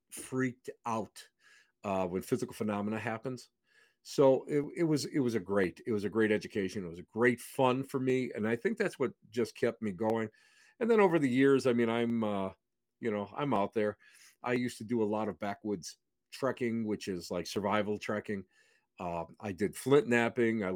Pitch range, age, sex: 105-130 Hz, 50-69, male